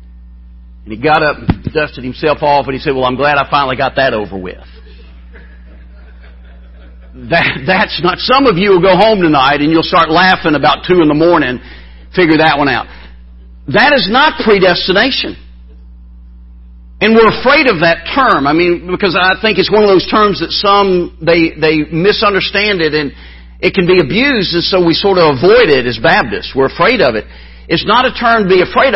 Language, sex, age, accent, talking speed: English, male, 50-69, American, 195 wpm